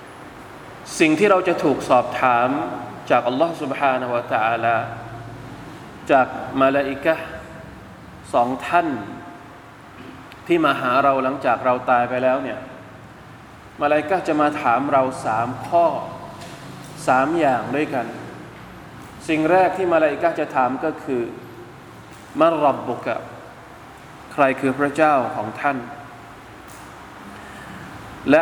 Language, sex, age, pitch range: Thai, male, 20-39, 130-155 Hz